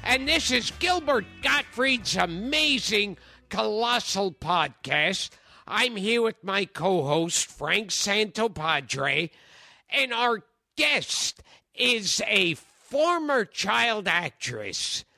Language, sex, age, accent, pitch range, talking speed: English, male, 50-69, American, 190-255 Hz, 90 wpm